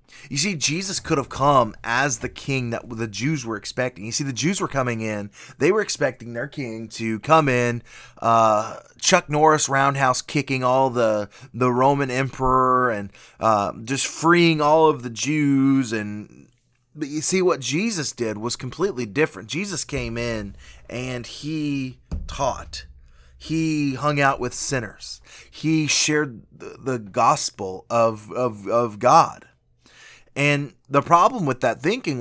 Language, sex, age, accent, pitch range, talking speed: English, male, 20-39, American, 110-140 Hz, 155 wpm